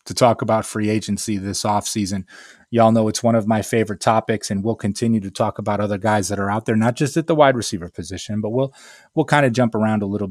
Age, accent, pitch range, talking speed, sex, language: 30-49, American, 105-125 Hz, 255 wpm, male, English